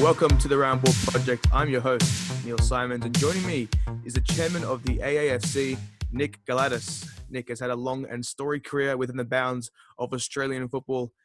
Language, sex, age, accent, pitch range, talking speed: English, male, 20-39, Australian, 125-150 Hz, 185 wpm